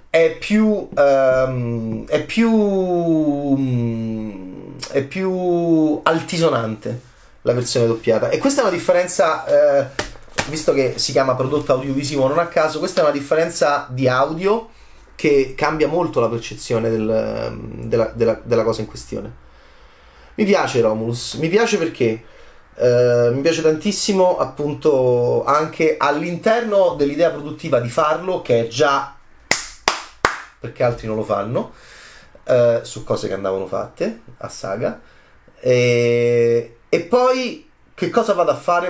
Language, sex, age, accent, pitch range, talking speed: Italian, male, 30-49, native, 120-175 Hz, 135 wpm